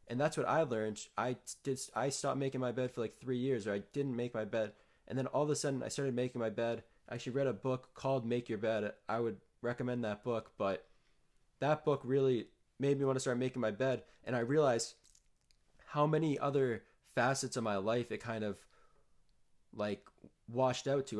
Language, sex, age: English, male, 20-39